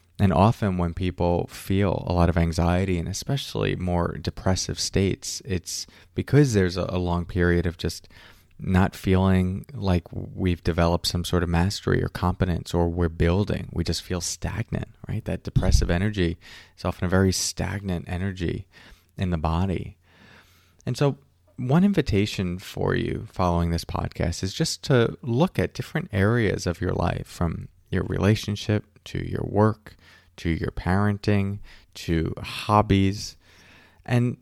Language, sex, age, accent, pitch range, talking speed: English, male, 30-49, American, 90-105 Hz, 145 wpm